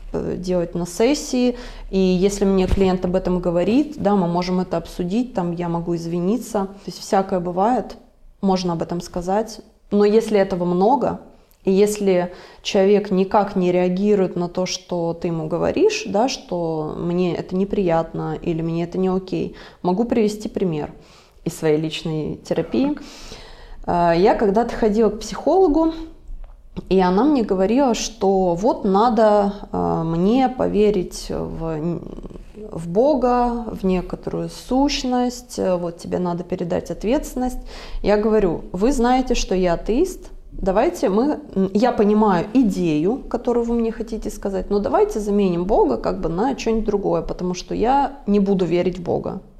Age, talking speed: 20-39, 145 wpm